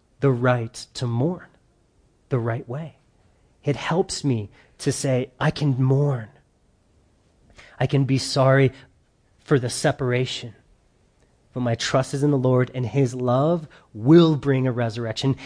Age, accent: 30-49, American